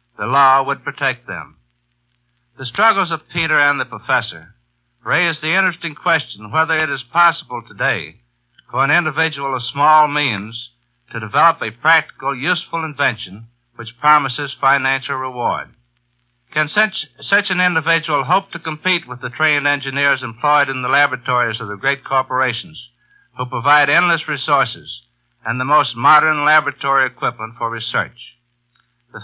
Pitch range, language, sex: 120-155 Hz, English, male